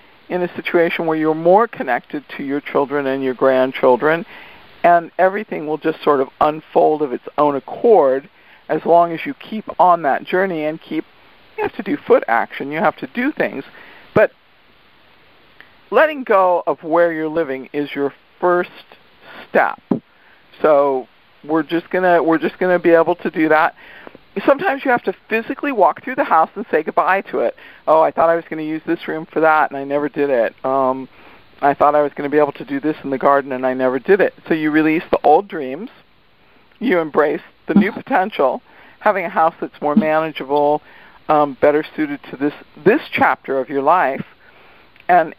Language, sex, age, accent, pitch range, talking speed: English, male, 50-69, American, 145-195 Hz, 195 wpm